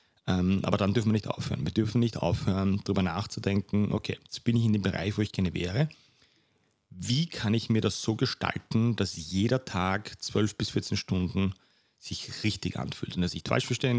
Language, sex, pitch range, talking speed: German, male, 100-120 Hz, 195 wpm